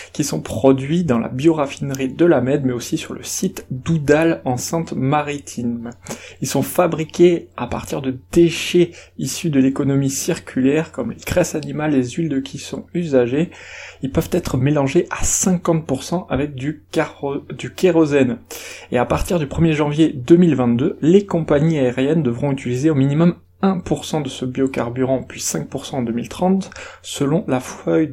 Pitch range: 130-170 Hz